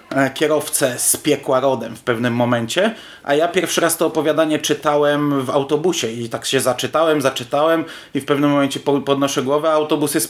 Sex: male